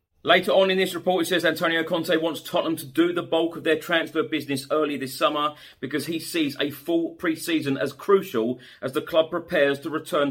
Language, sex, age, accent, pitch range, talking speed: English, male, 40-59, British, 135-165 Hz, 210 wpm